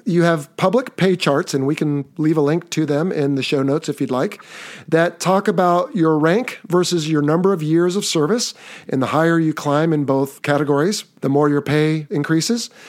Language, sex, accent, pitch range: English, male, American, 140-175 Hz